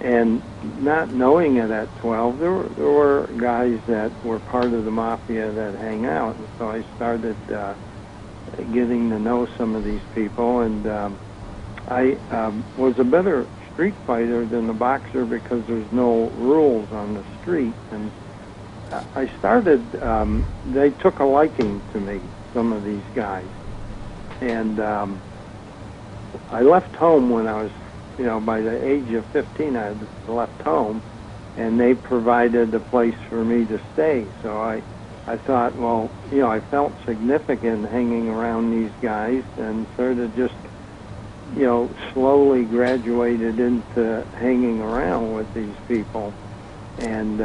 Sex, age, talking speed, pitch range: male, 60-79, 150 wpm, 105-120 Hz